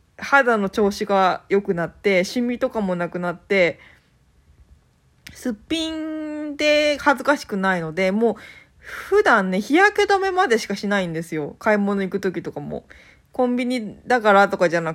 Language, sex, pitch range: Japanese, female, 170-260 Hz